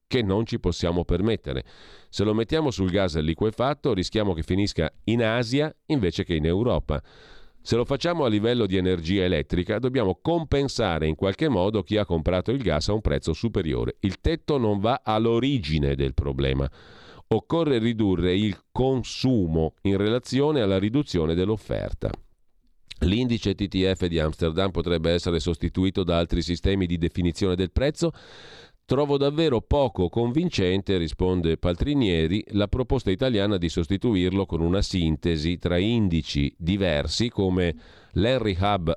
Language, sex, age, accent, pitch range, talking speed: Italian, male, 40-59, native, 85-115 Hz, 140 wpm